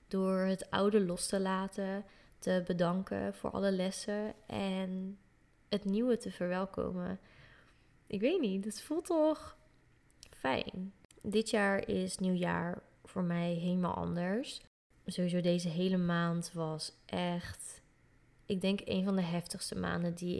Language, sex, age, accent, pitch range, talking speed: Dutch, female, 20-39, Dutch, 175-200 Hz, 130 wpm